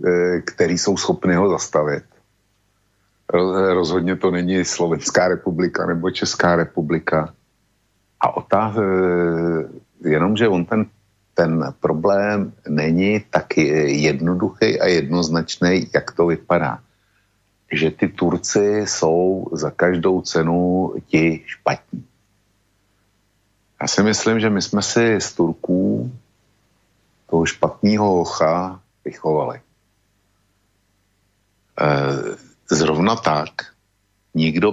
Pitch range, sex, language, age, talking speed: 85-100 Hz, male, Slovak, 50-69, 95 wpm